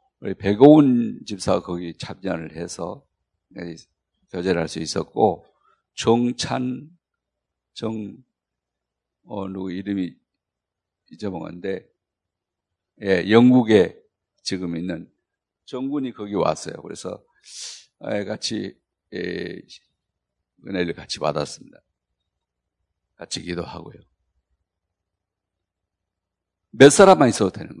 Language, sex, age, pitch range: Korean, male, 50-69, 90-130 Hz